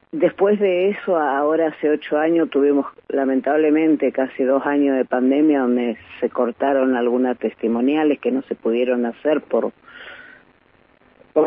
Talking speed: 135 wpm